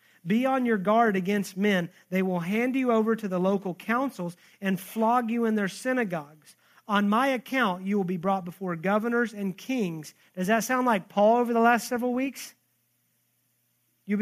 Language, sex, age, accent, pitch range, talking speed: English, male, 40-59, American, 180-225 Hz, 180 wpm